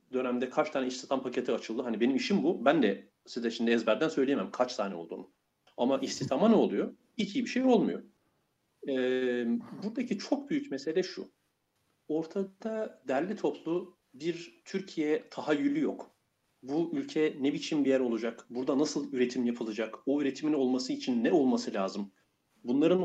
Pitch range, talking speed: 130-210 Hz, 155 wpm